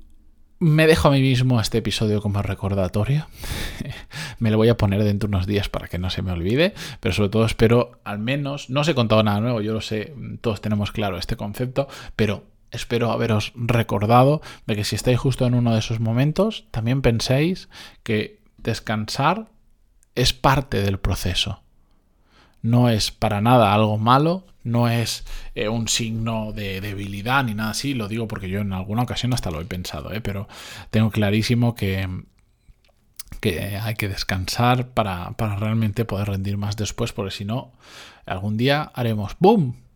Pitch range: 105-125 Hz